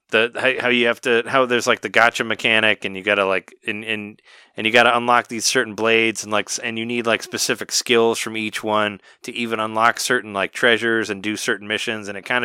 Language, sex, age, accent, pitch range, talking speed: English, male, 20-39, American, 95-115 Hz, 235 wpm